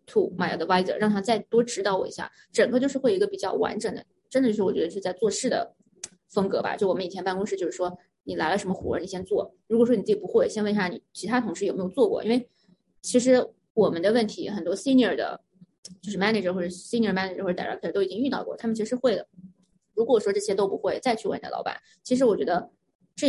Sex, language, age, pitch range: female, Chinese, 20-39, 185-235 Hz